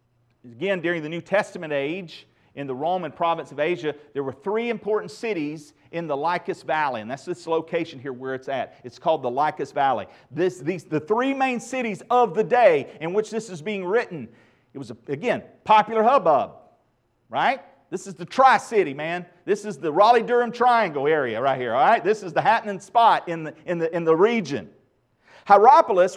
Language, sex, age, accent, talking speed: English, male, 40-59, American, 195 wpm